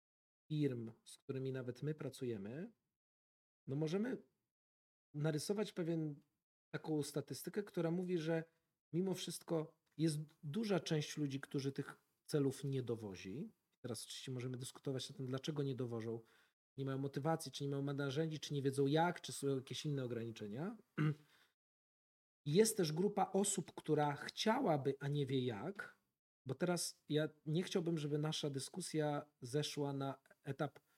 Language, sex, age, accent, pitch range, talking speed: Polish, male, 40-59, native, 140-170 Hz, 140 wpm